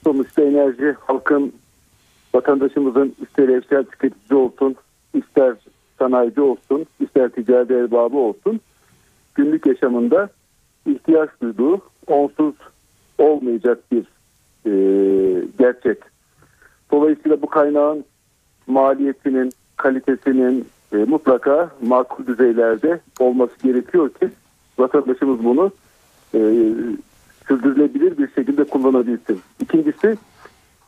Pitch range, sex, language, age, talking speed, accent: 125-155 Hz, male, Turkish, 50-69, 85 wpm, native